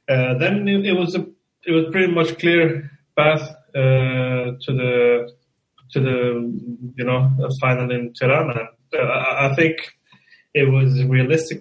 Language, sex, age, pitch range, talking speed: English, male, 30-49, 120-150 Hz, 140 wpm